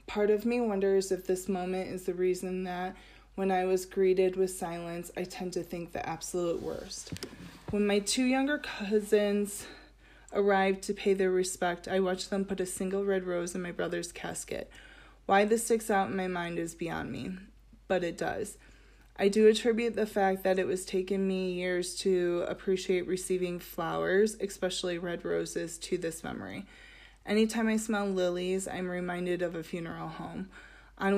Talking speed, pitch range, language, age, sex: 175 wpm, 180-200 Hz, English, 20-39, female